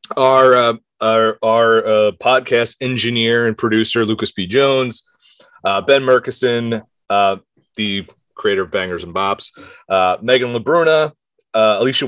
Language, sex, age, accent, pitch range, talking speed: English, male, 30-49, American, 110-185 Hz, 135 wpm